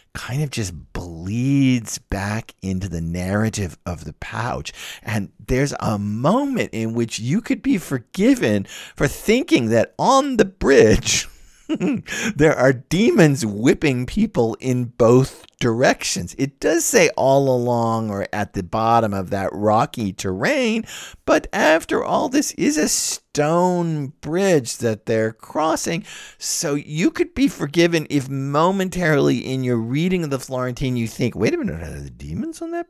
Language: English